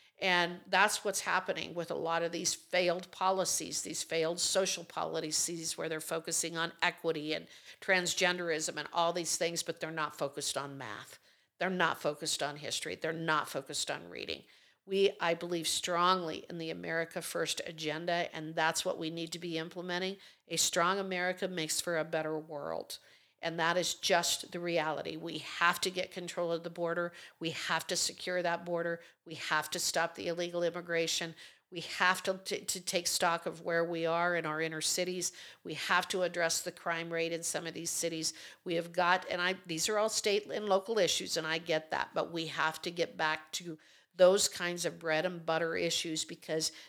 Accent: American